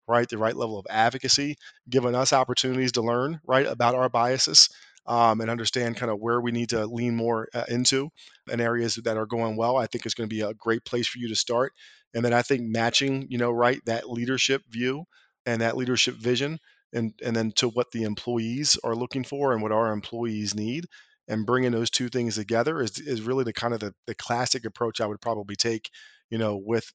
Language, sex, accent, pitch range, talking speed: English, male, American, 110-125 Hz, 225 wpm